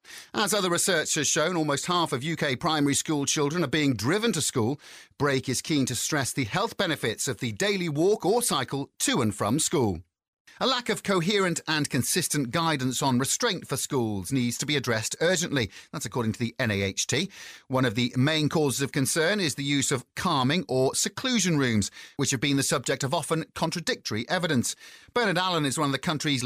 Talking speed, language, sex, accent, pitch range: 195 wpm, English, male, British, 130-170 Hz